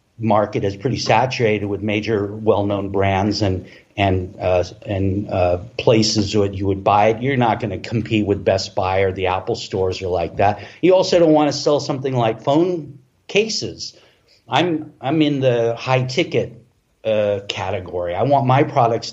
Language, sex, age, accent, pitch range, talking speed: English, male, 50-69, American, 105-140 Hz, 175 wpm